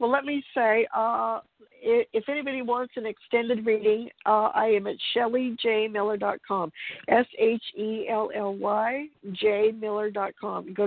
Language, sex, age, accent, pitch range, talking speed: English, female, 60-79, American, 195-230 Hz, 150 wpm